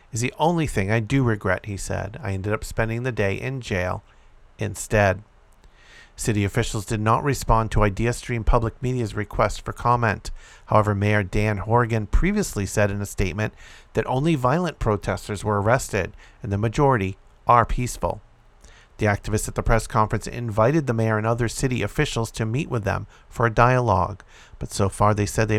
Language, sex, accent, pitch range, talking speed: English, male, American, 100-125 Hz, 180 wpm